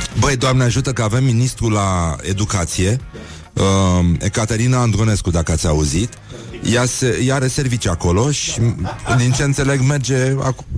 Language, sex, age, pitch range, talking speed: Romanian, male, 30-49, 100-130 Hz, 145 wpm